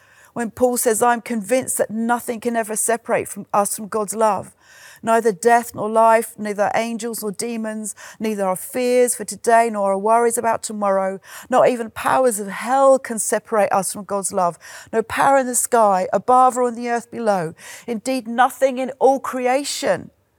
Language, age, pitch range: English, 40-59, 200-245 Hz